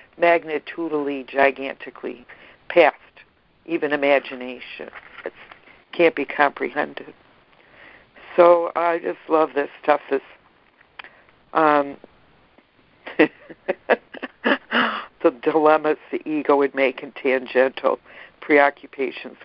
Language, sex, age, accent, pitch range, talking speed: English, female, 60-79, American, 140-165 Hz, 85 wpm